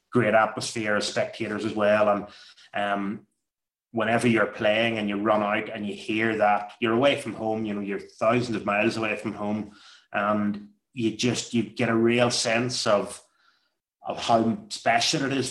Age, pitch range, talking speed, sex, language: 30-49, 110-125 Hz, 180 wpm, male, English